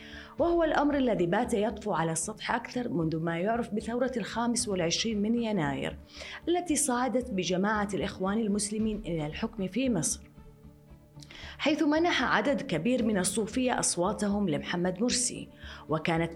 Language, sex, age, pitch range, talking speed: Arabic, female, 30-49, 170-245 Hz, 130 wpm